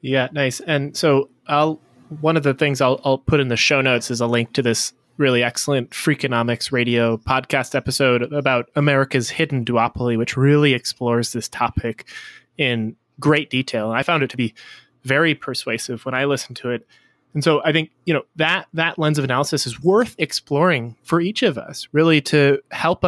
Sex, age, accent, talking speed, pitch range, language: male, 20-39, American, 190 wpm, 125-155 Hz, English